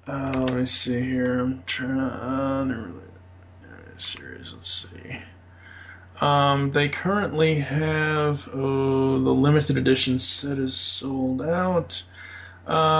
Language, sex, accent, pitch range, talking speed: English, male, American, 95-140 Hz, 125 wpm